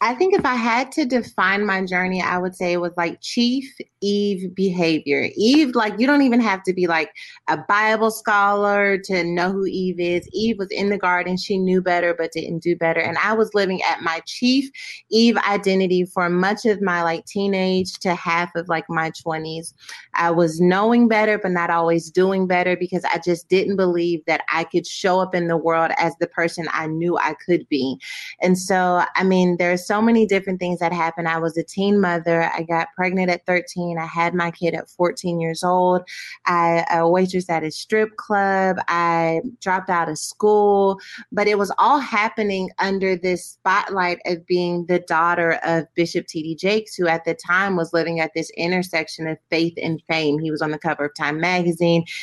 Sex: female